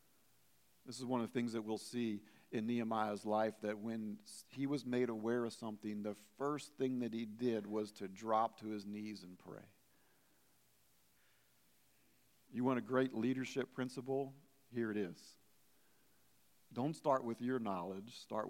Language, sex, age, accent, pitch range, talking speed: English, male, 50-69, American, 115-145 Hz, 160 wpm